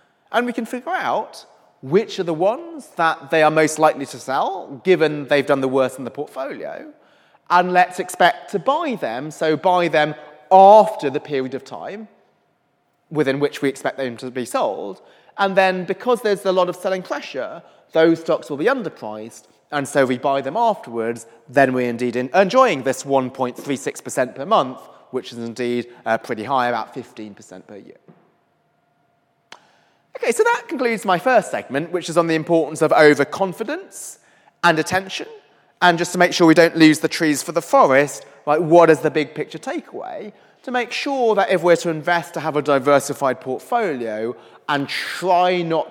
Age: 30-49